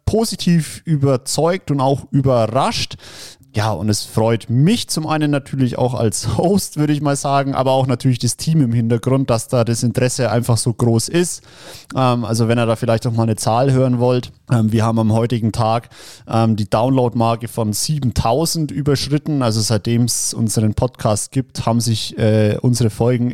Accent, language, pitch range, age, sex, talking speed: German, German, 115-145 Hz, 30-49, male, 170 wpm